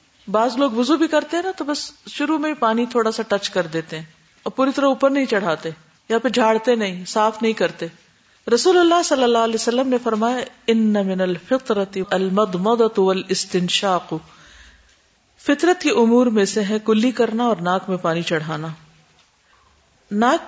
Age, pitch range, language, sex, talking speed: 50-69, 190-250 Hz, Urdu, female, 155 wpm